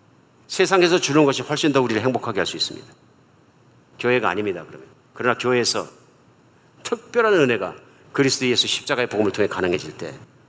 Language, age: Korean, 50-69